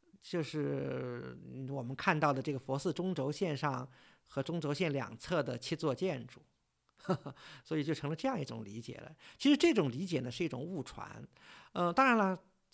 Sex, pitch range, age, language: male, 130-190 Hz, 50-69, Chinese